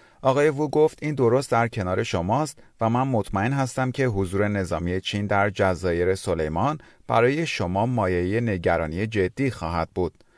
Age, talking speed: 40-59, 150 wpm